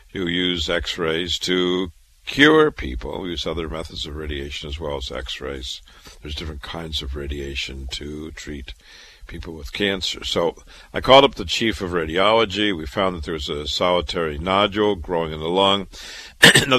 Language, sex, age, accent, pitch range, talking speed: English, male, 50-69, American, 80-100 Hz, 170 wpm